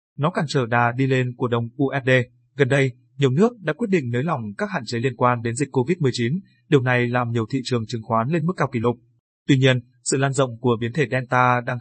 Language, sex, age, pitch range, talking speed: Vietnamese, male, 20-39, 120-140 Hz, 250 wpm